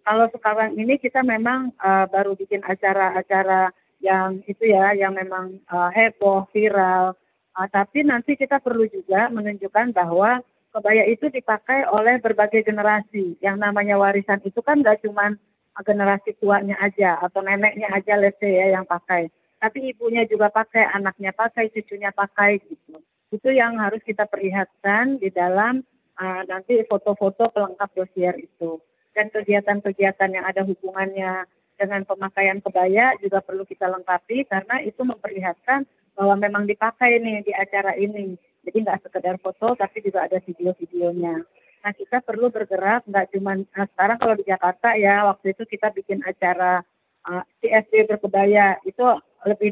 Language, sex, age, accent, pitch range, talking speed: Indonesian, female, 30-49, native, 190-215 Hz, 145 wpm